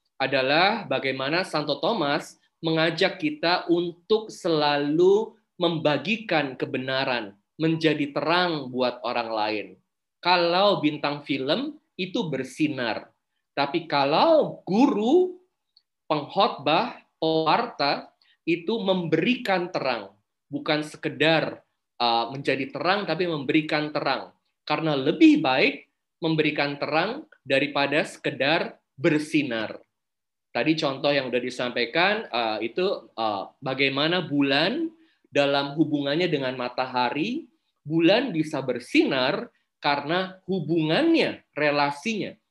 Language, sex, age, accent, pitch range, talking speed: Indonesian, male, 20-39, native, 135-175 Hz, 85 wpm